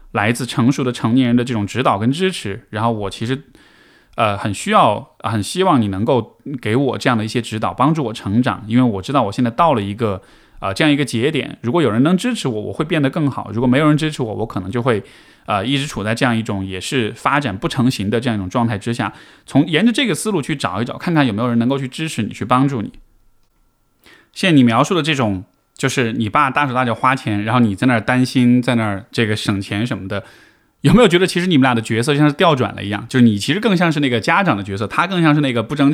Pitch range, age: 110-150 Hz, 20-39